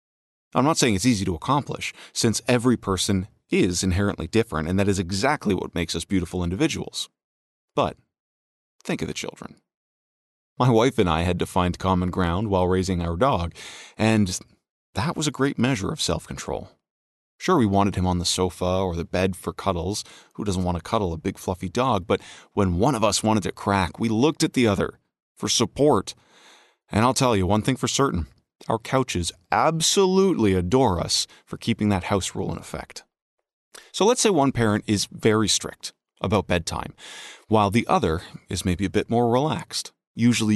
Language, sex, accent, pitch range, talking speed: English, male, American, 90-115 Hz, 185 wpm